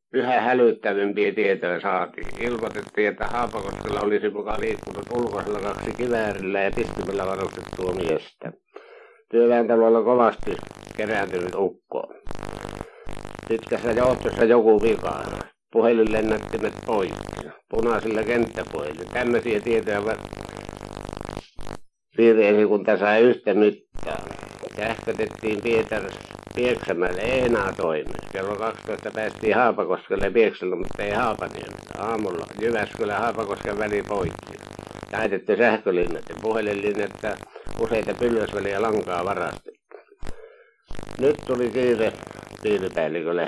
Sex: male